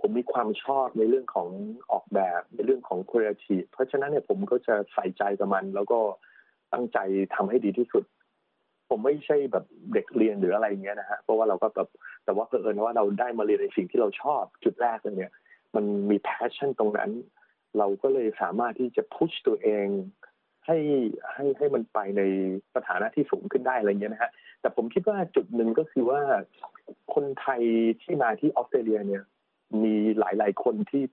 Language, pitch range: Thai, 105-145 Hz